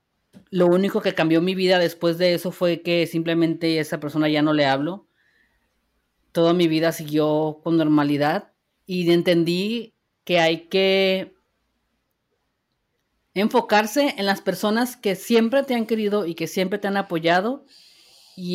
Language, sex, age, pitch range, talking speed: Spanish, female, 40-59, 150-200 Hz, 145 wpm